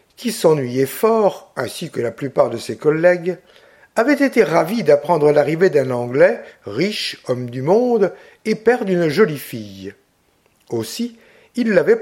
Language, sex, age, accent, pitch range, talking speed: French, male, 60-79, French, 145-210 Hz, 145 wpm